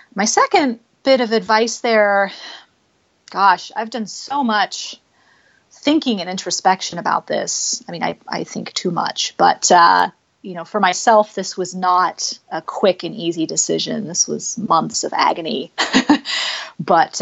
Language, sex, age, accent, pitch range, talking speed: English, female, 30-49, American, 180-250 Hz, 150 wpm